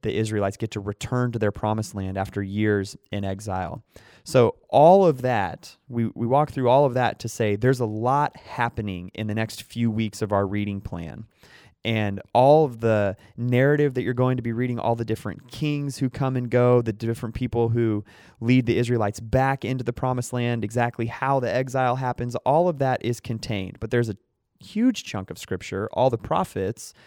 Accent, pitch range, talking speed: American, 100-125 Hz, 200 wpm